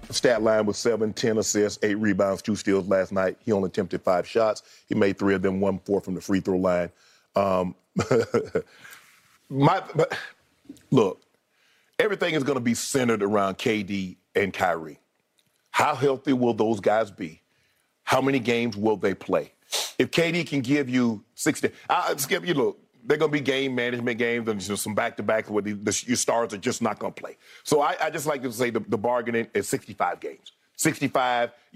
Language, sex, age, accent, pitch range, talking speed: English, male, 40-59, American, 105-140 Hz, 195 wpm